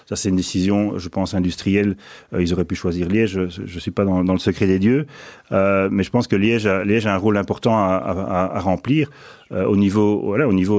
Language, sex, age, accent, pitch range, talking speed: French, male, 40-59, French, 95-115 Hz, 245 wpm